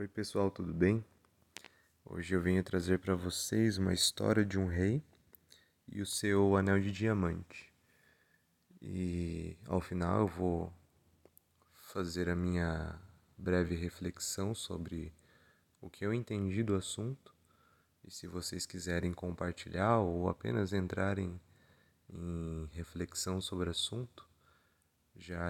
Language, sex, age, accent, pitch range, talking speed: Portuguese, male, 20-39, Brazilian, 85-100 Hz, 120 wpm